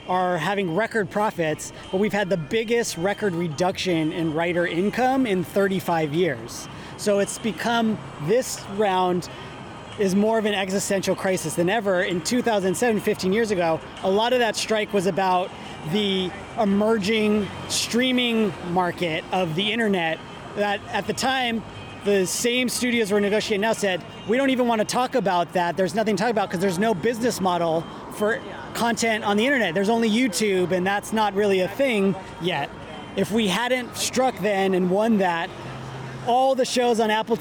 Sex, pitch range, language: male, 180-225 Hz, English